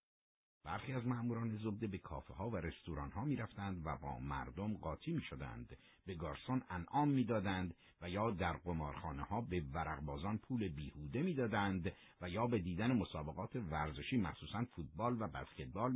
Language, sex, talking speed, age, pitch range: Persian, male, 155 wpm, 50-69, 75-110 Hz